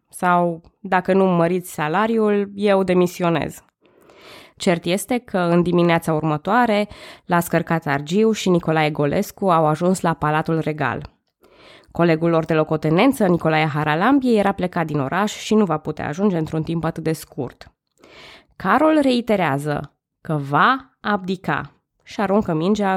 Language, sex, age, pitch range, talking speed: Romanian, female, 20-39, 155-200 Hz, 135 wpm